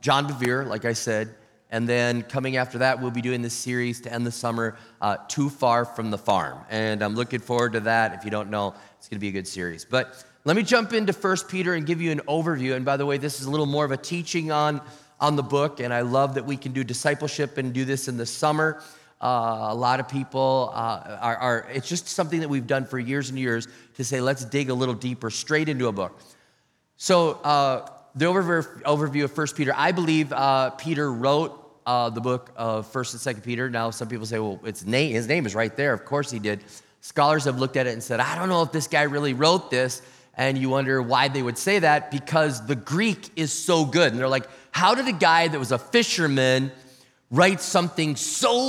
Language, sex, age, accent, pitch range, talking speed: English, male, 30-49, American, 125-160 Hz, 235 wpm